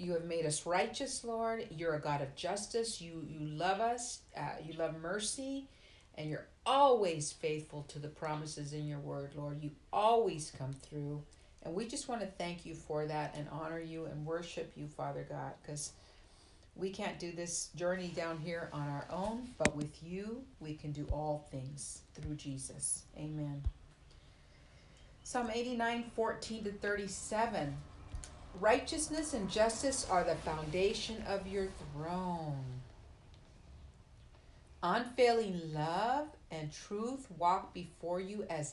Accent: American